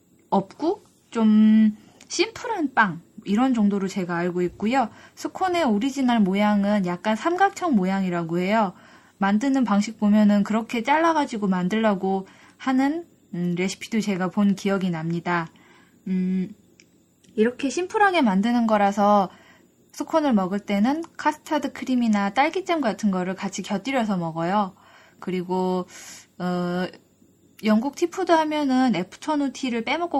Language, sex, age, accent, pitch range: Korean, female, 20-39, native, 195-270 Hz